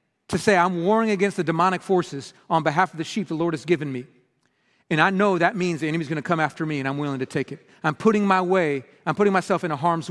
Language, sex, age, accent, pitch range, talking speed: English, male, 40-59, American, 150-195 Hz, 275 wpm